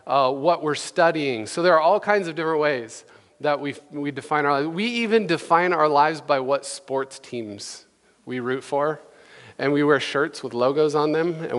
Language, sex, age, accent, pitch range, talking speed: English, male, 40-59, American, 130-170 Hz, 205 wpm